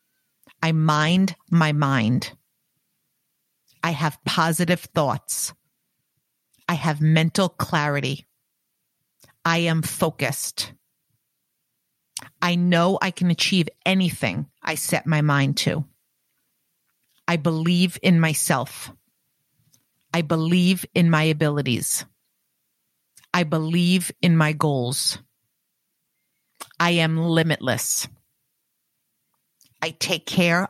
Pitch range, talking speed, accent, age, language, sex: 140-170 Hz, 90 wpm, American, 40-59, English, female